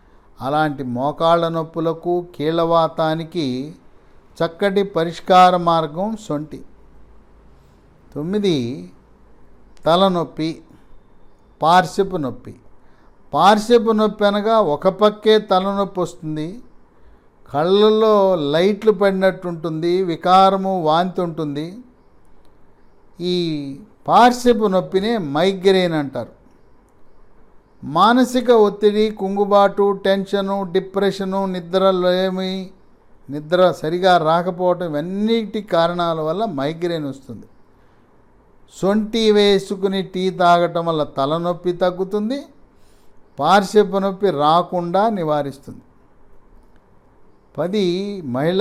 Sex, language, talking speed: male, English, 60 wpm